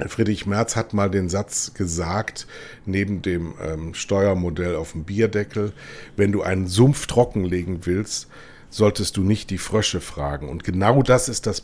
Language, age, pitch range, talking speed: German, 60-79, 95-120 Hz, 160 wpm